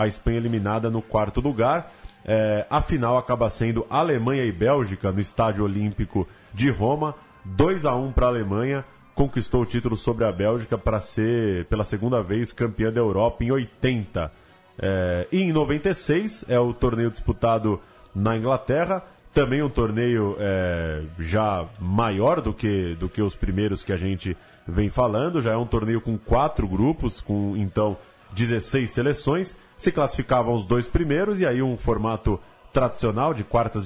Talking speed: 160 wpm